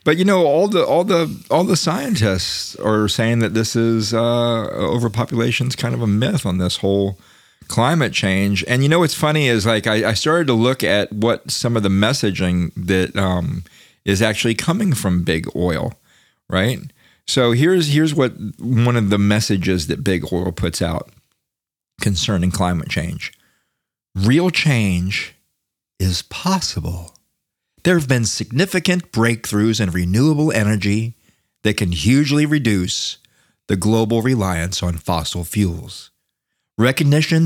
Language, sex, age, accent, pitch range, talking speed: English, male, 40-59, American, 95-120 Hz, 150 wpm